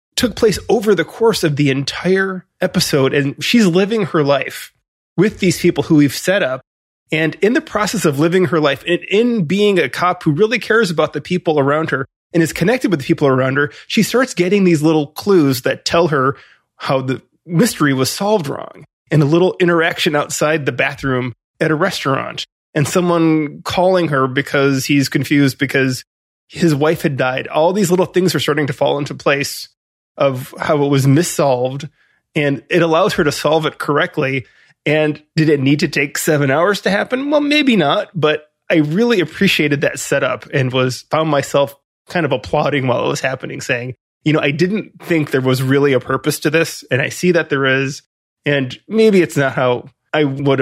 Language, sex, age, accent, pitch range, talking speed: English, male, 20-39, American, 140-180 Hz, 195 wpm